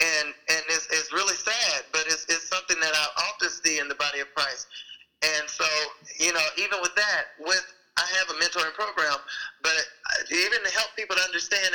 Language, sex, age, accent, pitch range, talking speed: English, male, 20-39, American, 160-210 Hz, 200 wpm